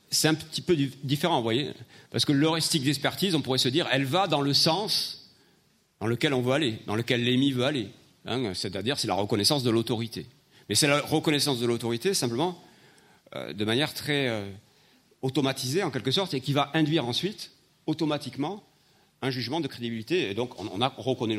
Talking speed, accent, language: 180 wpm, French, French